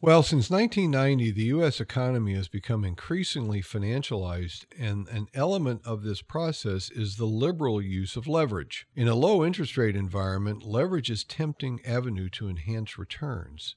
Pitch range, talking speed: 100-135 Hz, 155 wpm